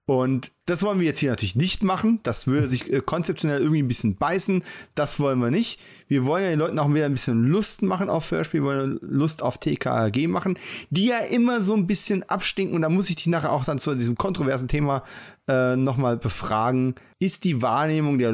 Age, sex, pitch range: 30-49, male, 125-165 Hz